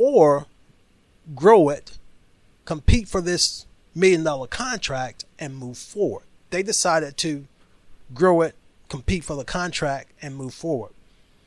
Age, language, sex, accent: 30-49, English, male, American